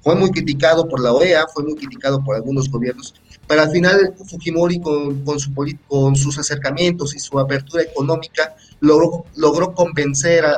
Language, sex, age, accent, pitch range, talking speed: Spanish, male, 30-49, Mexican, 135-170 Hz, 170 wpm